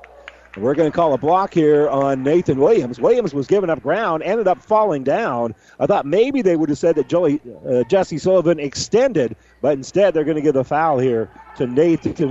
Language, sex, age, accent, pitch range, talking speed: English, male, 50-69, American, 130-165 Hz, 210 wpm